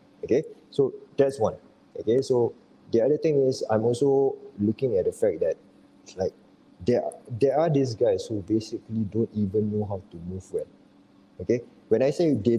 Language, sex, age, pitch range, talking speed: English, male, 20-39, 105-165 Hz, 175 wpm